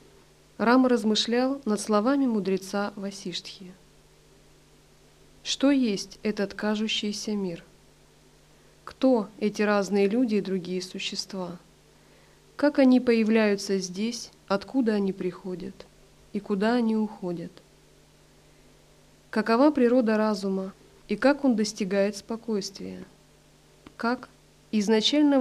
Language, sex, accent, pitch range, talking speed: Russian, female, native, 190-225 Hz, 90 wpm